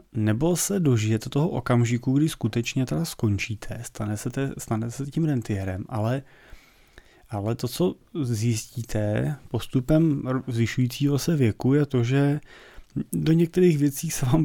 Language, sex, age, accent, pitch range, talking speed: Czech, male, 30-49, native, 115-140 Hz, 135 wpm